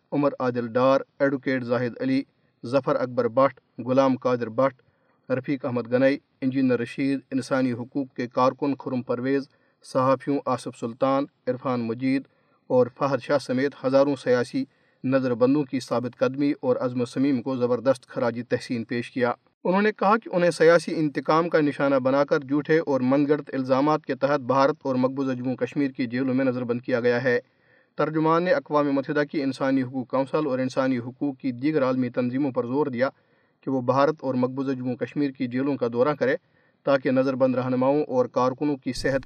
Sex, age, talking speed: male, 40-59, 180 wpm